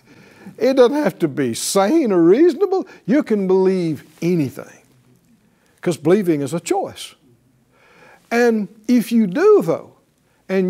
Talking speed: 130 wpm